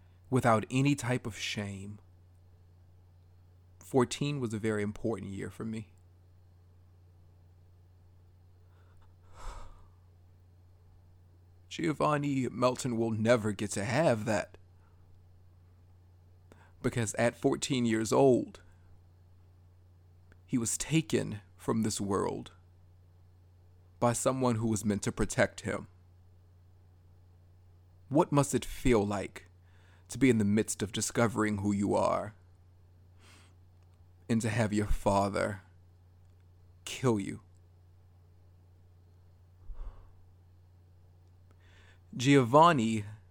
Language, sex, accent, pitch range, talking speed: English, male, American, 90-110 Hz, 85 wpm